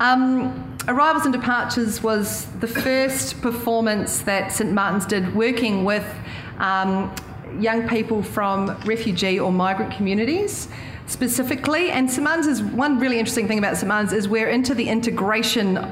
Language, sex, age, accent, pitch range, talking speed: English, female, 40-59, Australian, 205-245 Hz, 145 wpm